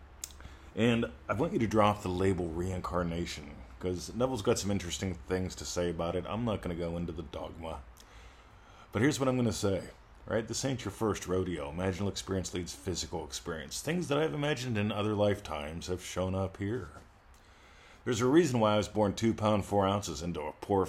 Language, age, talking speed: English, 40-59, 200 wpm